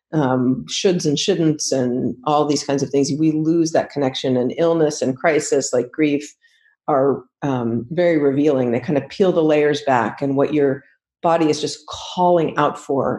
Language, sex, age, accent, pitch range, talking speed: English, female, 40-59, American, 140-180 Hz, 180 wpm